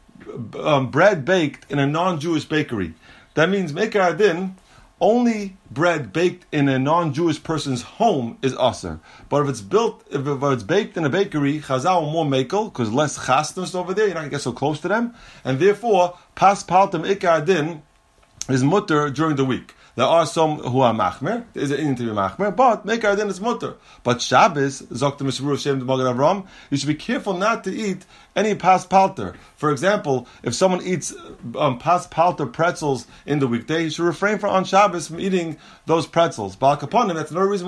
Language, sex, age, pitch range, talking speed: English, male, 30-49, 140-190 Hz, 175 wpm